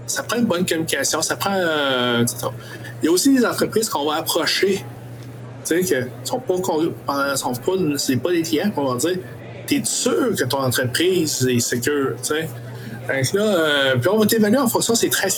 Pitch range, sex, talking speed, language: 125-185 Hz, male, 200 wpm, French